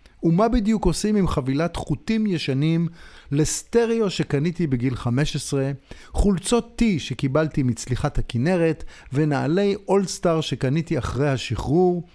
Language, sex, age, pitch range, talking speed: Hebrew, male, 50-69, 120-170 Hz, 110 wpm